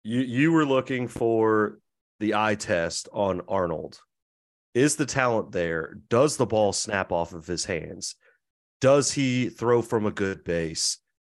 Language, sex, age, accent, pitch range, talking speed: English, male, 30-49, American, 100-125 Hz, 155 wpm